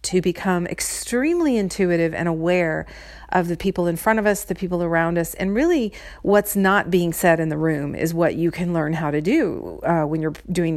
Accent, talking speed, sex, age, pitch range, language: American, 210 wpm, female, 40-59, 165-210 Hz, English